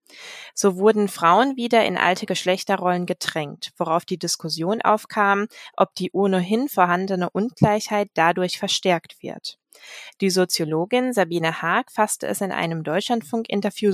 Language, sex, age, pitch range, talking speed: German, female, 20-39, 175-215 Hz, 125 wpm